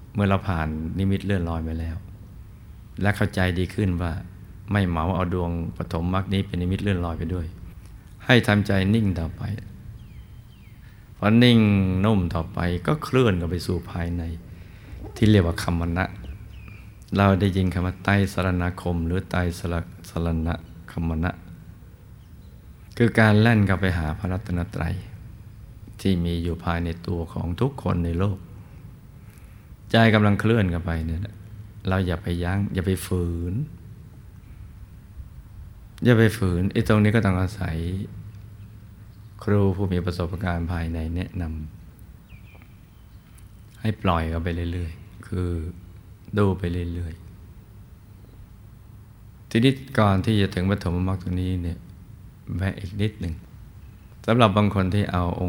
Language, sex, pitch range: Thai, male, 85-105 Hz